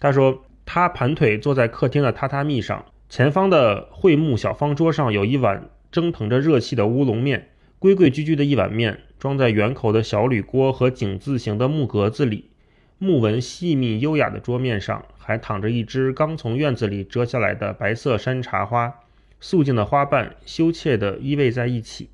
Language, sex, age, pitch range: Chinese, male, 30-49, 110-140 Hz